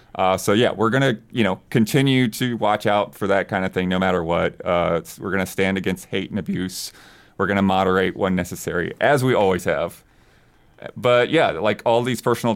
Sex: male